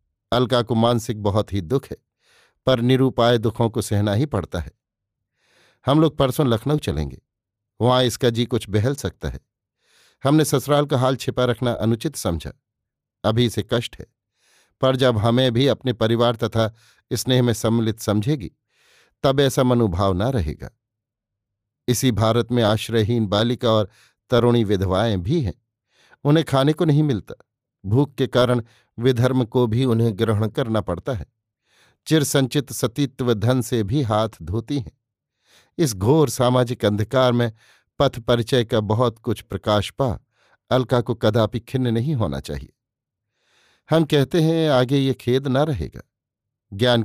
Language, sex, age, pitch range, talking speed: Hindi, male, 50-69, 110-130 Hz, 150 wpm